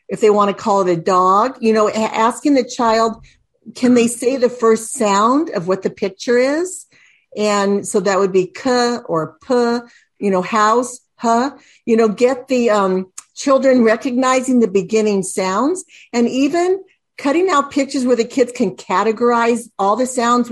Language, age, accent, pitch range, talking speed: English, 50-69, American, 215-265 Hz, 175 wpm